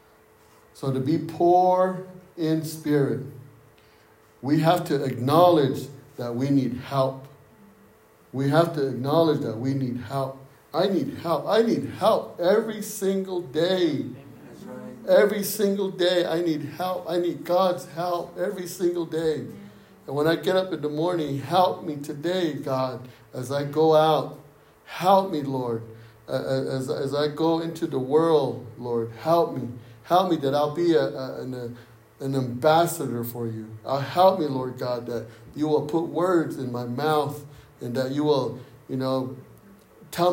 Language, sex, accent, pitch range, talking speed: English, male, American, 130-165 Hz, 155 wpm